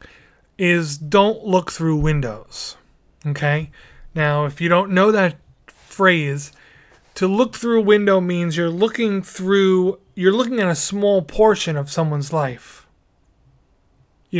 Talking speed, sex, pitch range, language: 135 wpm, male, 155-195 Hz, English